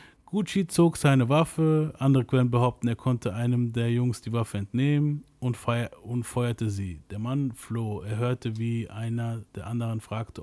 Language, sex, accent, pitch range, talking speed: German, male, German, 110-130 Hz, 175 wpm